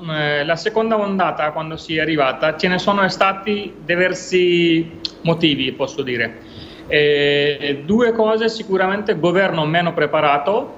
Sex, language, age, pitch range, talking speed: male, Italian, 30-49, 155-195 Hz, 120 wpm